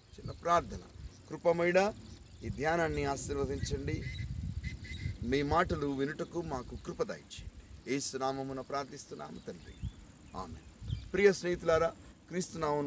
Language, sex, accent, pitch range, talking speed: Telugu, male, native, 130-175 Hz, 90 wpm